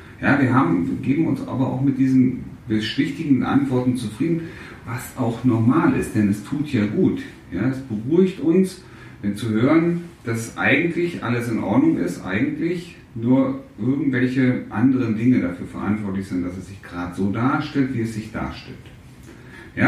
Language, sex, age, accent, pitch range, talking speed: German, male, 40-59, German, 100-135 Hz, 165 wpm